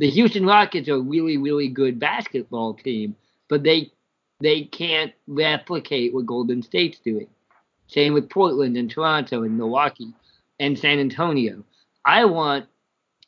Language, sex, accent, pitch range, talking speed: English, male, American, 135-170 Hz, 135 wpm